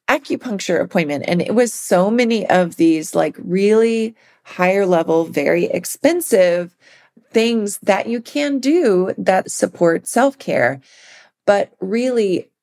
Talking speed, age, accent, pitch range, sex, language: 120 wpm, 40-59, American, 170-210 Hz, female, English